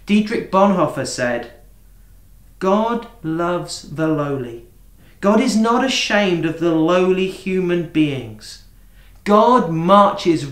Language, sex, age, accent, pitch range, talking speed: English, male, 40-59, British, 120-190 Hz, 105 wpm